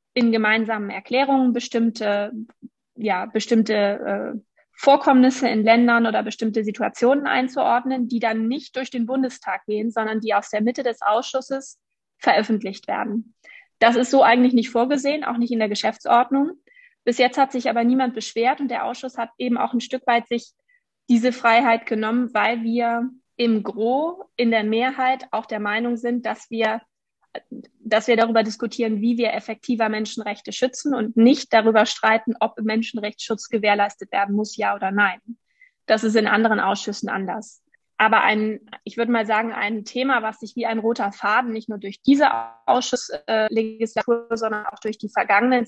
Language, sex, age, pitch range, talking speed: German, female, 20-39, 215-250 Hz, 165 wpm